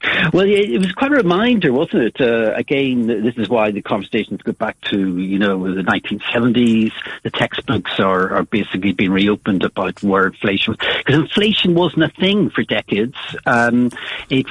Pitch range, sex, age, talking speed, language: 100-135 Hz, male, 60-79, 180 wpm, English